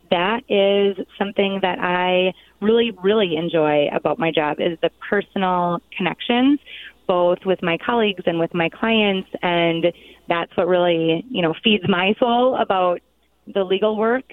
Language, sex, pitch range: English, female, 170-205 Hz